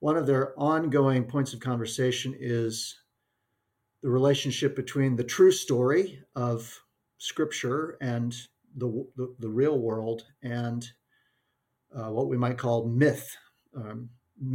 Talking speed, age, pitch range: 125 wpm, 50-69, 120-140 Hz